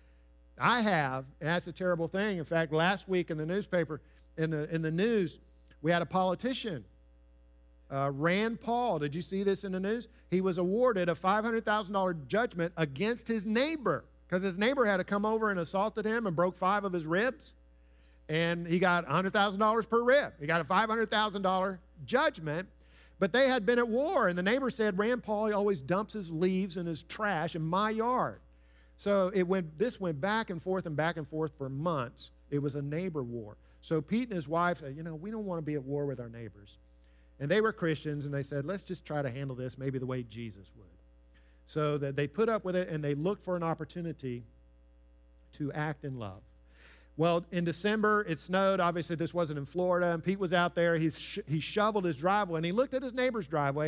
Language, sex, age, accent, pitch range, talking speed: English, male, 50-69, American, 140-200 Hz, 215 wpm